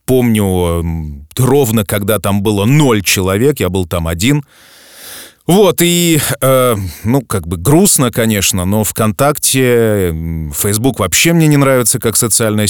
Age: 30-49